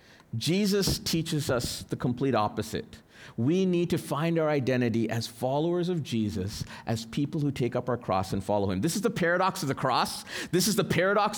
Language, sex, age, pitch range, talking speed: English, male, 40-59, 115-175 Hz, 195 wpm